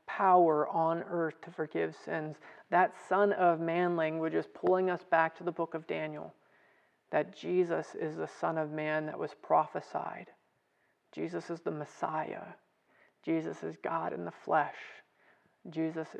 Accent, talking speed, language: American, 150 wpm, English